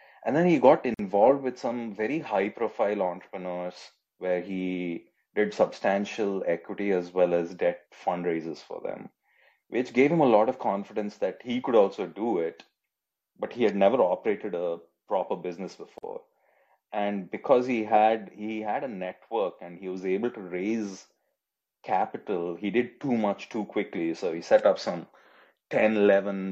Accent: Indian